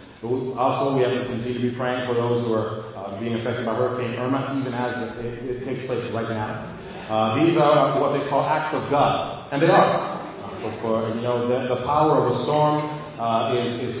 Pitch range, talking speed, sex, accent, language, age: 120-160 Hz, 230 wpm, male, American, English, 40-59